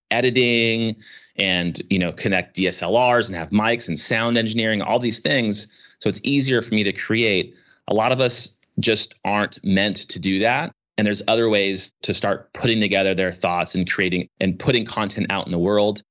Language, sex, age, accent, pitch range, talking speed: English, male, 30-49, American, 95-115 Hz, 190 wpm